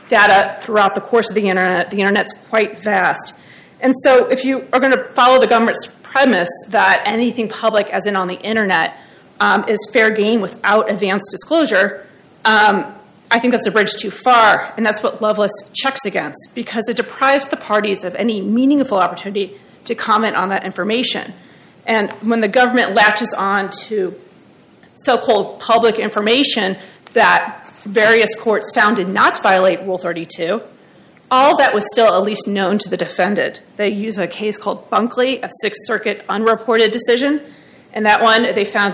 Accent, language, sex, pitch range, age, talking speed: American, English, female, 195-230 Hz, 30-49, 170 wpm